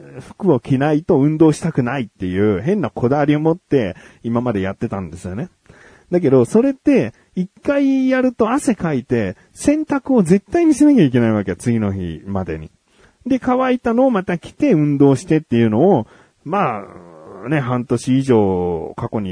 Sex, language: male, Japanese